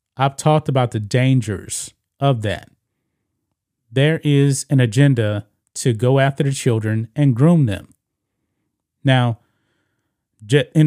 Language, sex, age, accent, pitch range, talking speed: English, male, 30-49, American, 115-145 Hz, 115 wpm